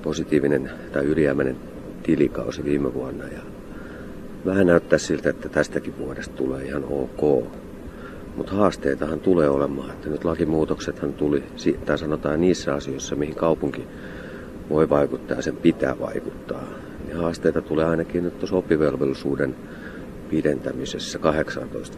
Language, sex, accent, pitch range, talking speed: Finnish, male, native, 70-80 Hz, 120 wpm